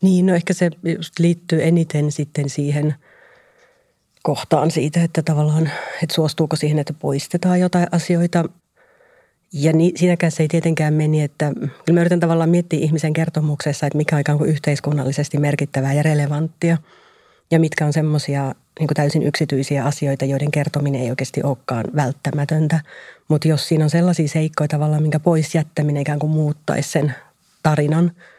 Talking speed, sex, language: 150 wpm, female, Finnish